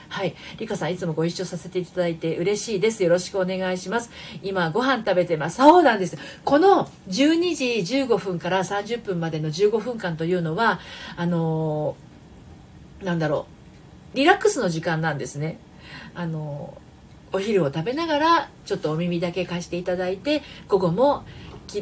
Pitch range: 170-280 Hz